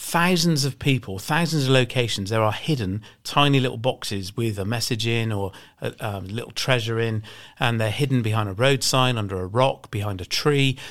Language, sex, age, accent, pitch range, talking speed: English, male, 40-59, British, 110-145 Hz, 195 wpm